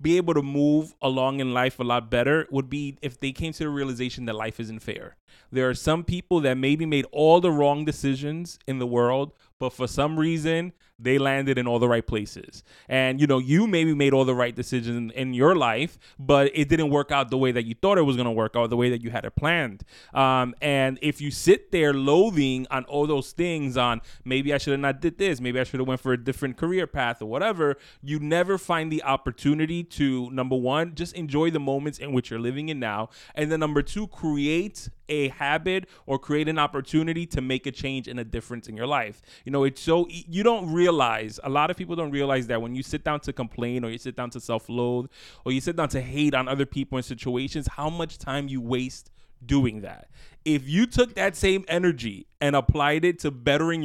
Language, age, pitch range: English, 20-39, 125-155 Hz